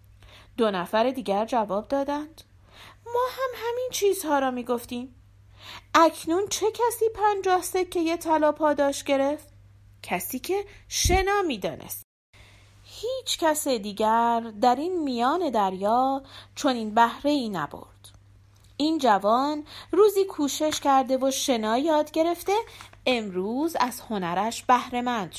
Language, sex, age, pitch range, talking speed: Persian, female, 40-59, 185-300 Hz, 115 wpm